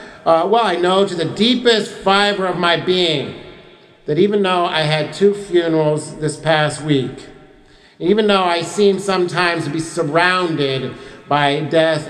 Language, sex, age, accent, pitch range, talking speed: English, male, 50-69, American, 130-150 Hz, 155 wpm